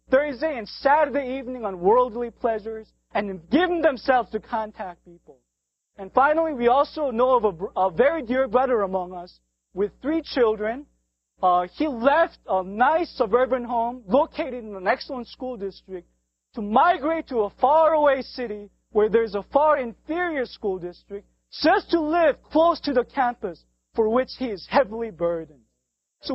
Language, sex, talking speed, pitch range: English, male, 160 wpm, 210-295 Hz